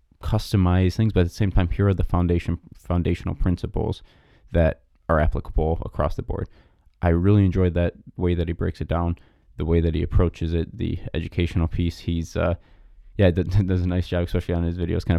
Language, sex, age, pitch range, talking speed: English, male, 20-39, 85-105 Hz, 200 wpm